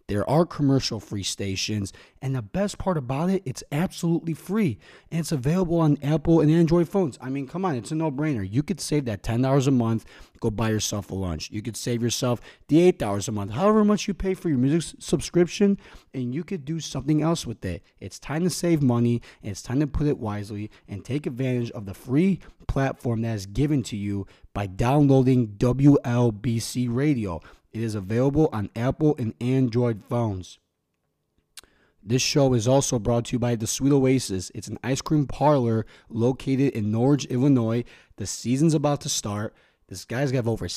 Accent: American